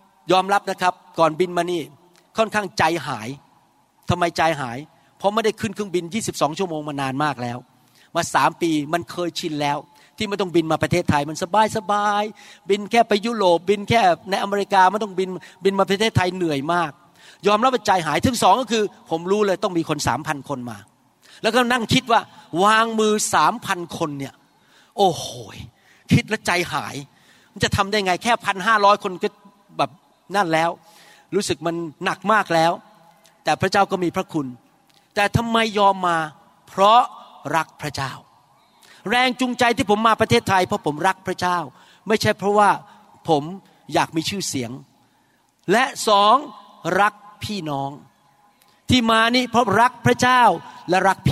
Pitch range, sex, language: 165-220 Hz, male, Thai